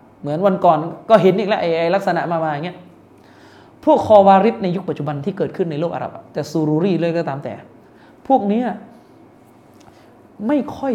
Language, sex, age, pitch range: Thai, male, 20-39, 175-255 Hz